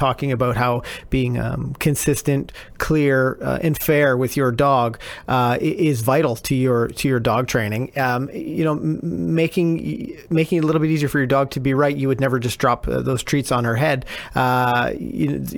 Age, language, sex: 40-59, English, male